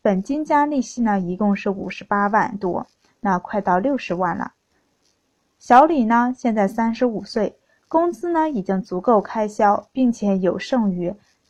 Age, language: 20-39, Chinese